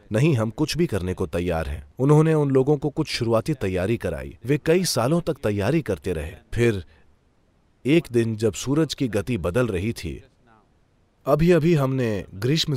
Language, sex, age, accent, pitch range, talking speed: English, male, 30-49, Indian, 100-150 Hz, 170 wpm